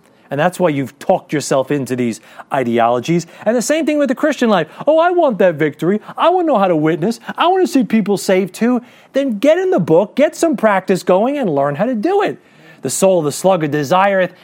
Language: English